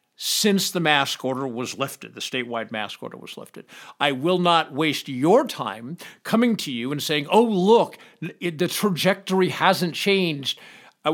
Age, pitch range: 50-69, 140-190 Hz